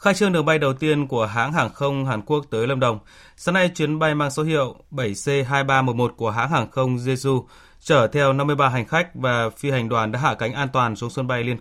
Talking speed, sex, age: 240 wpm, male, 20-39